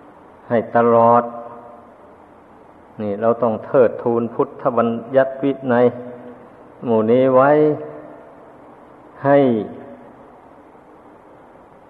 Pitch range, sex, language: 115-130 Hz, male, Thai